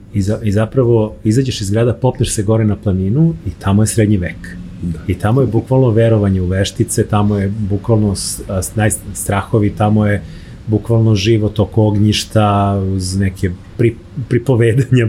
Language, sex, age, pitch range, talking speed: English, male, 30-49, 100-115 Hz, 140 wpm